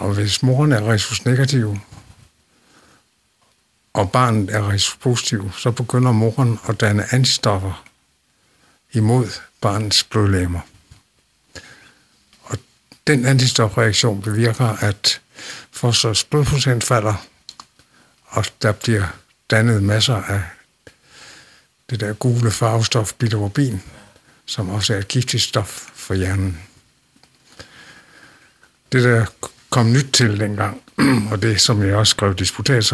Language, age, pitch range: Danish, 60-79, 100-125 Hz